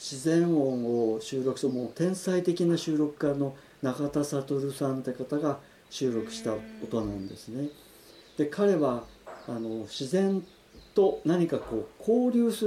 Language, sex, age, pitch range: Japanese, male, 50-69, 125-185 Hz